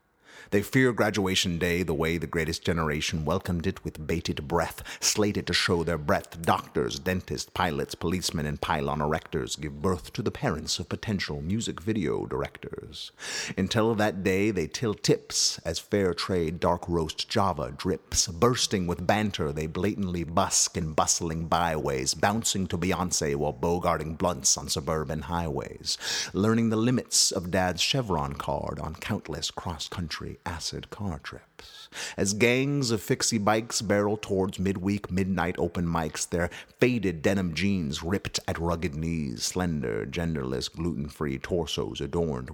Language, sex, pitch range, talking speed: English, male, 80-100 Hz, 150 wpm